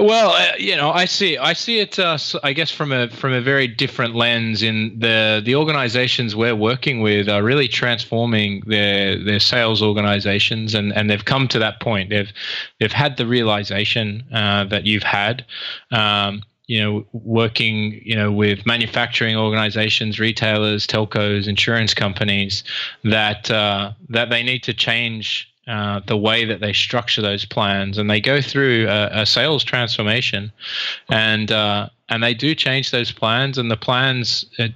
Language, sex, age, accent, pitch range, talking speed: English, male, 20-39, Australian, 105-120 Hz, 165 wpm